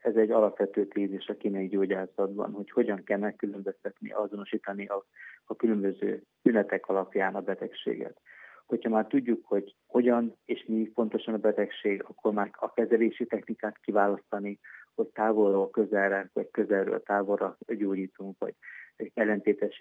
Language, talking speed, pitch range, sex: Hungarian, 135 wpm, 100-110 Hz, male